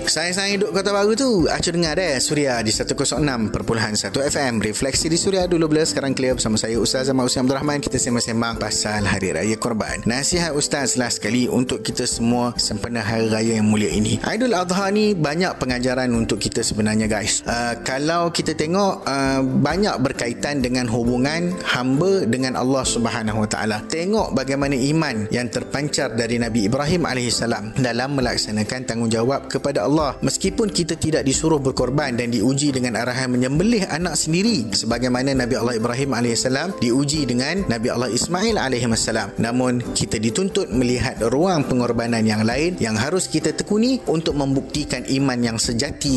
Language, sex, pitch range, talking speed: Malay, male, 115-155 Hz, 160 wpm